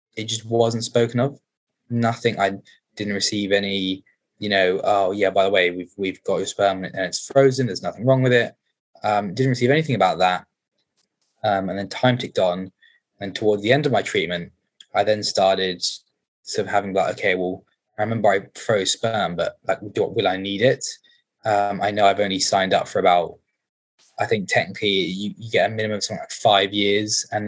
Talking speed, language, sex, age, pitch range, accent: 200 wpm, English, male, 20-39, 95-115 Hz, British